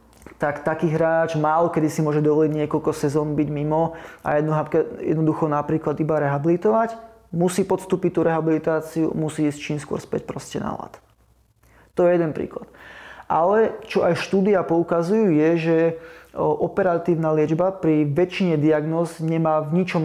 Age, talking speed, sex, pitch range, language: 20-39, 145 wpm, male, 150-175 Hz, Slovak